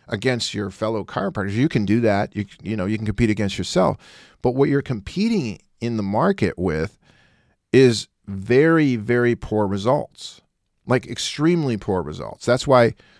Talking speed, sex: 160 wpm, male